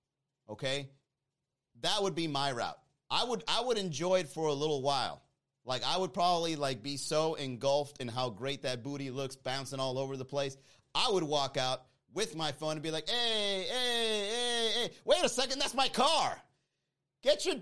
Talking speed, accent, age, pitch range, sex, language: 195 wpm, American, 30-49, 135-185 Hz, male, English